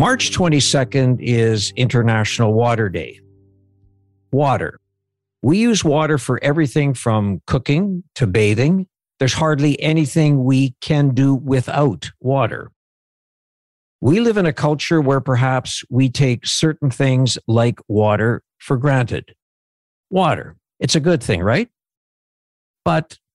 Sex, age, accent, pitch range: male, 60-79, American, 115-150 Hz